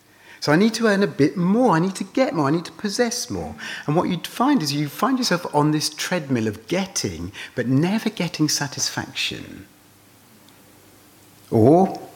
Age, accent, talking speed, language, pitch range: 40-59, British, 180 wpm, English, 105-165 Hz